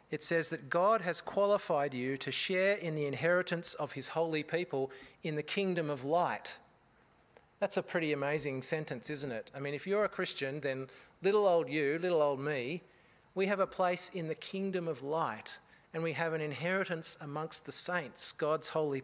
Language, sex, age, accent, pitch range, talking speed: English, male, 40-59, Australian, 145-185 Hz, 190 wpm